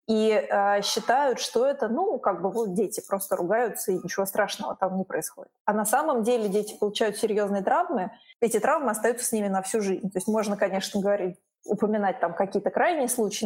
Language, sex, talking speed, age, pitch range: Russian, female, 195 wpm, 20-39, 200-230 Hz